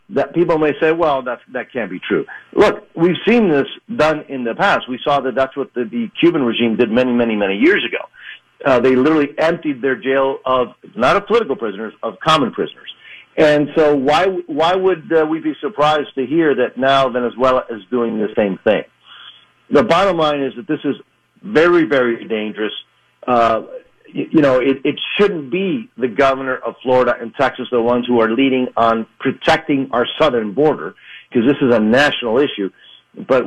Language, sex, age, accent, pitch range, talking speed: English, male, 50-69, American, 120-150 Hz, 190 wpm